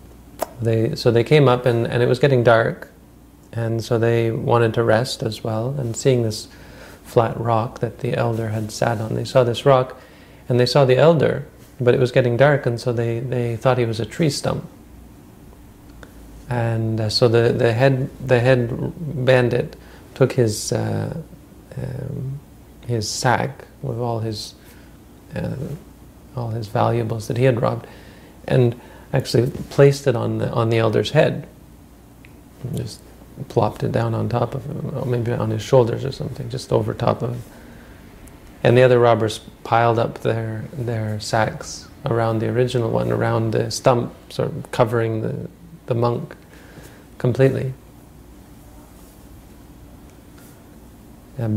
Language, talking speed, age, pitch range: English, 155 wpm, 40-59, 115-130 Hz